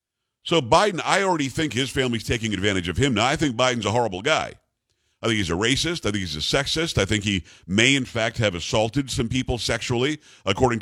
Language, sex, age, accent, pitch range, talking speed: English, male, 50-69, American, 105-135 Hz, 220 wpm